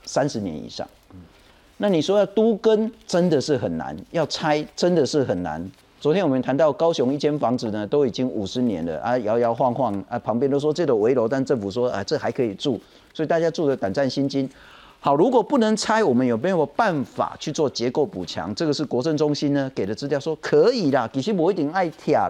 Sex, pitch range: male, 110-180 Hz